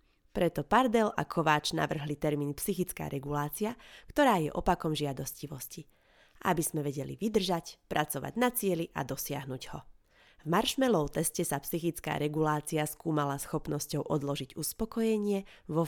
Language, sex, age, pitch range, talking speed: Slovak, female, 30-49, 145-190 Hz, 125 wpm